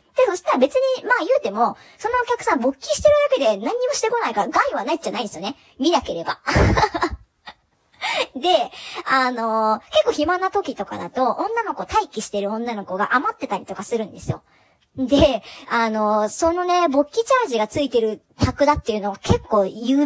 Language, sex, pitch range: Japanese, male, 225-355 Hz